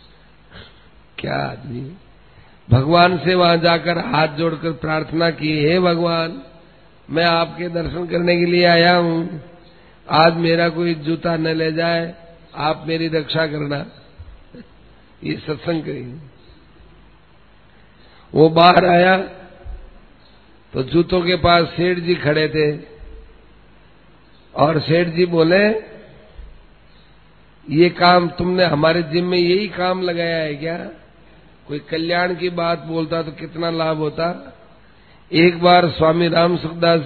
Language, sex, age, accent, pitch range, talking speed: Hindi, male, 50-69, native, 155-175 Hz, 120 wpm